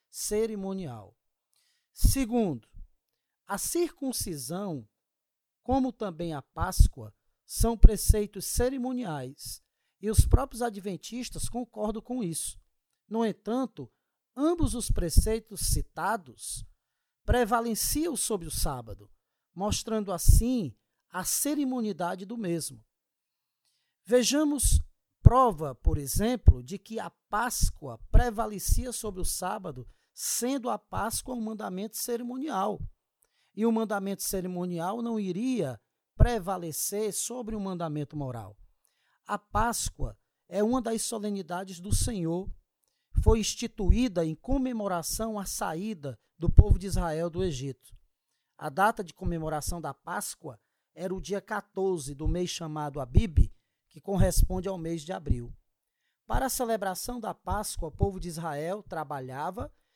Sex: male